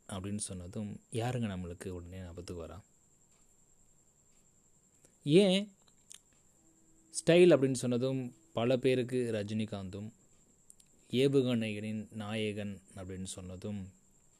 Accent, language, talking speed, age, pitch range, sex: native, Tamil, 75 wpm, 20-39, 95-120 Hz, male